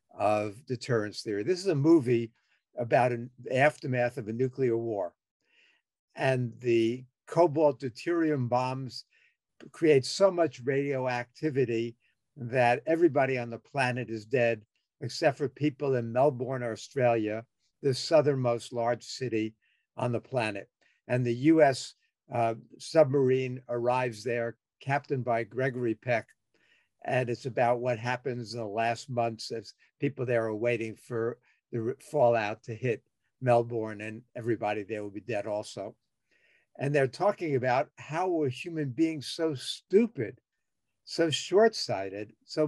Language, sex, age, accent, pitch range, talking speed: English, male, 50-69, American, 115-140 Hz, 130 wpm